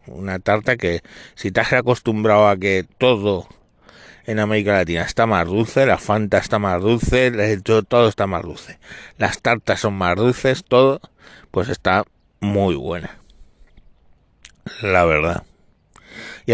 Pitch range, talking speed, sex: 95-120 Hz, 140 wpm, male